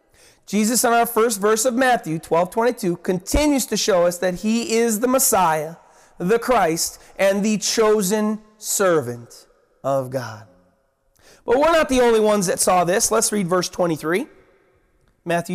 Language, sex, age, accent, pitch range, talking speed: English, male, 30-49, American, 195-265 Hz, 155 wpm